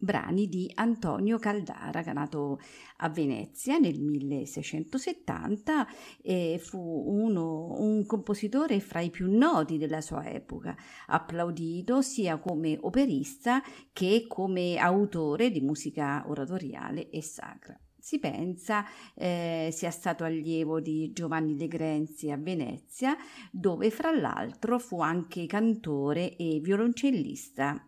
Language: Italian